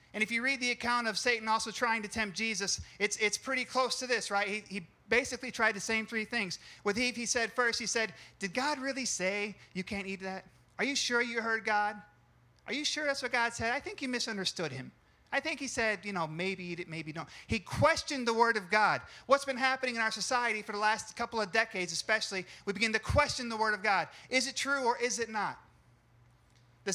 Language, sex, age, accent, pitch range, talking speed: English, male, 30-49, American, 175-235 Hz, 240 wpm